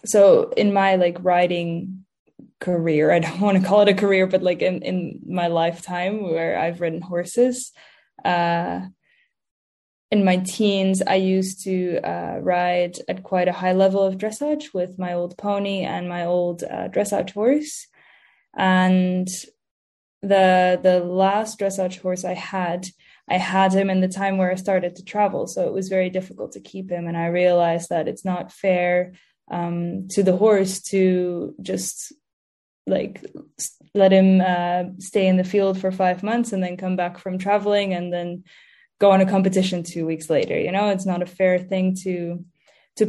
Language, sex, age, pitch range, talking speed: English, female, 10-29, 175-195 Hz, 175 wpm